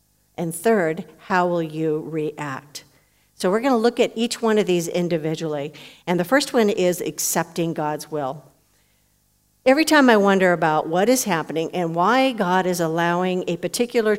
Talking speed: 170 wpm